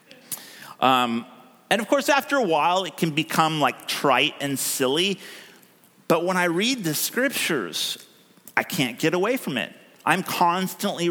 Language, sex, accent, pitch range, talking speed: English, male, American, 125-180 Hz, 150 wpm